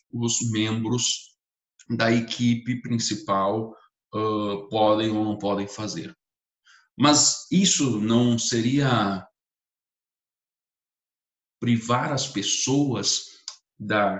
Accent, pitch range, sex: Brazilian, 105-125 Hz, male